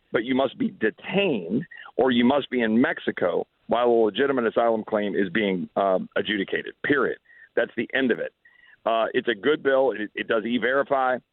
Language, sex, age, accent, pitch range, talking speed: English, male, 50-69, American, 115-155 Hz, 185 wpm